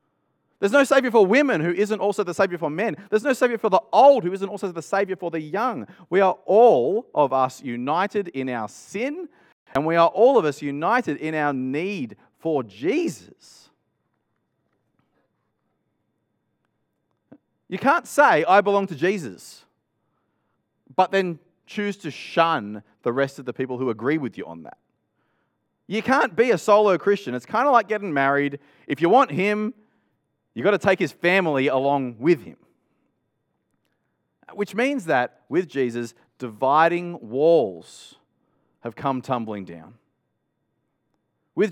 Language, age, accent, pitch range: English, 30-49, Australian, 140-210 Hz